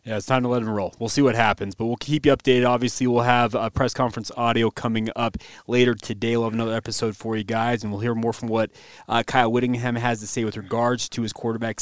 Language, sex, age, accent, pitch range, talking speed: English, male, 30-49, American, 115-150 Hz, 265 wpm